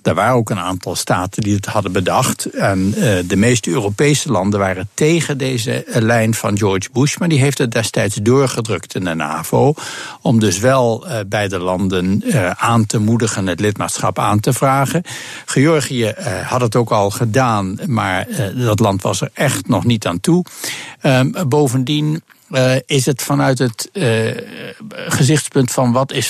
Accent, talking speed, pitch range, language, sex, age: Dutch, 160 wpm, 110-145 Hz, Dutch, male, 60-79